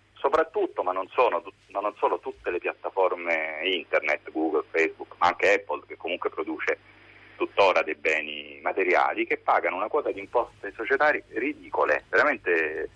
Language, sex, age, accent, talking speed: Italian, male, 40-59, native, 150 wpm